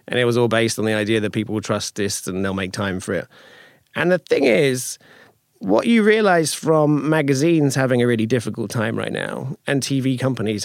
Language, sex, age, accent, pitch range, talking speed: English, male, 40-59, British, 120-155 Hz, 215 wpm